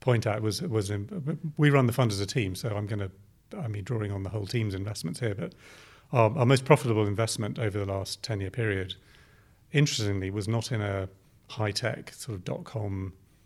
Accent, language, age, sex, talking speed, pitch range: British, English, 40-59, male, 215 wpm, 105-125 Hz